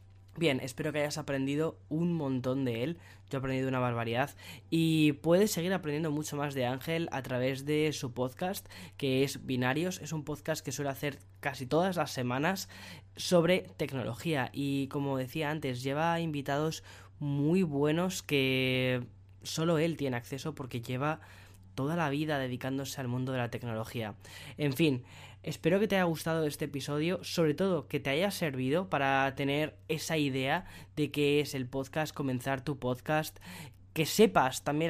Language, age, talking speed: Spanish, 10-29, 165 wpm